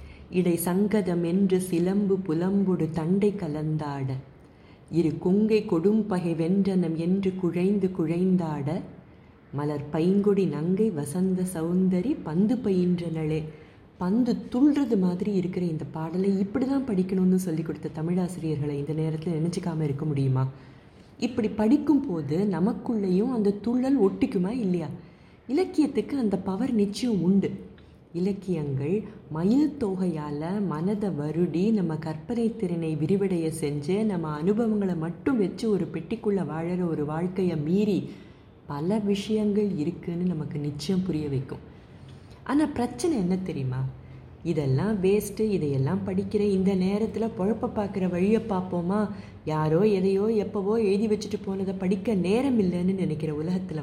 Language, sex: Tamil, female